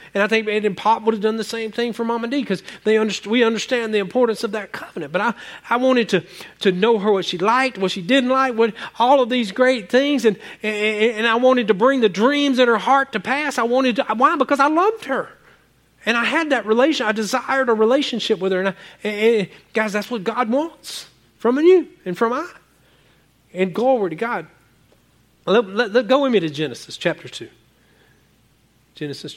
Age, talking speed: 40-59, 220 wpm